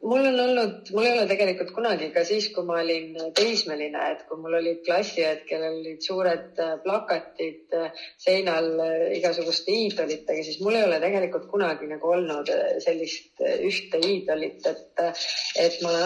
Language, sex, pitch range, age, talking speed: English, female, 160-190 Hz, 30-49, 155 wpm